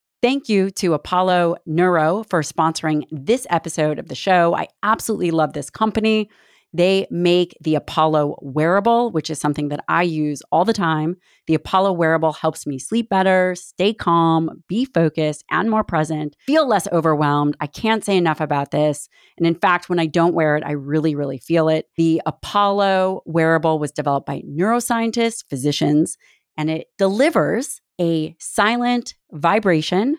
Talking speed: 160 wpm